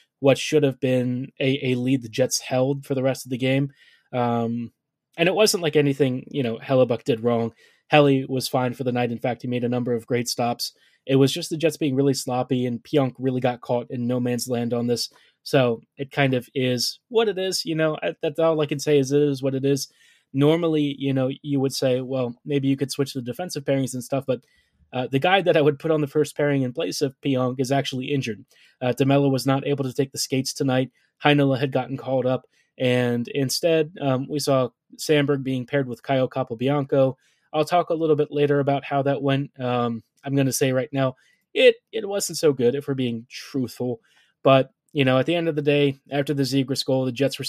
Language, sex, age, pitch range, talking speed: English, male, 20-39, 125-145 Hz, 235 wpm